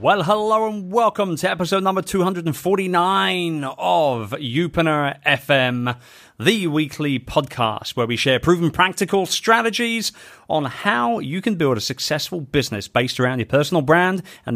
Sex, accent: male, British